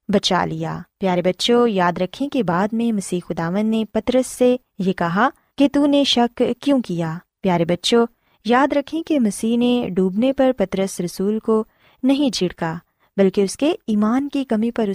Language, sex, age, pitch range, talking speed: Urdu, female, 20-39, 185-255 Hz, 175 wpm